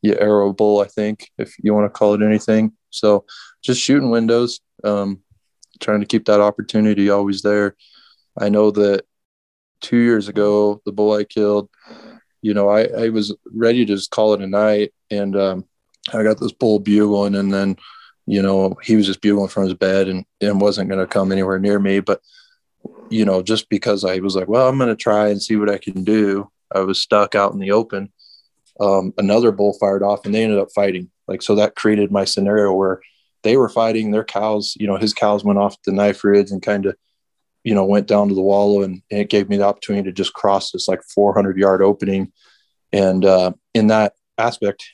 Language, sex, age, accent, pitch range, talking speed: English, male, 20-39, American, 100-105 Hz, 215 wpm